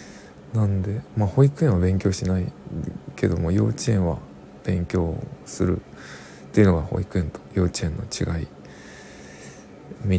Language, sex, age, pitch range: Japanese, male, 20-39, 70-100 Hz